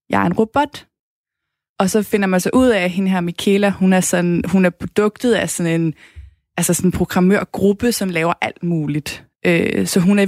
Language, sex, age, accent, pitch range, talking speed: Danish, female, 20-39, native, 180-215 Hz, 210 wpm